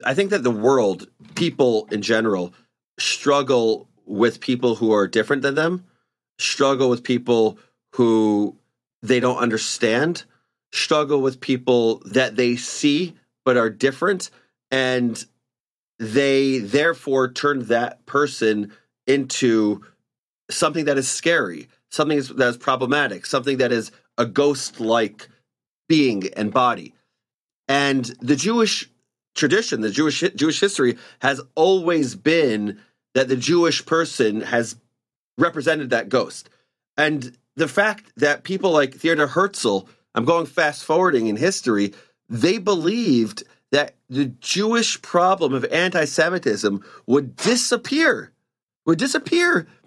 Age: 30-49